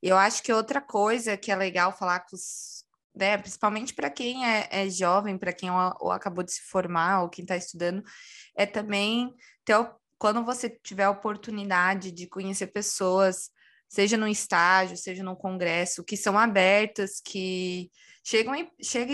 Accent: Brazilian